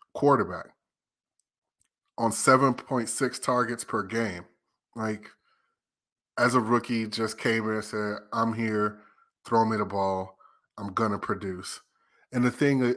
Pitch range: 105-125 Hz